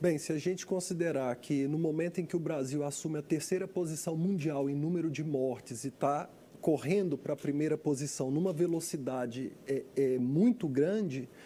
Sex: male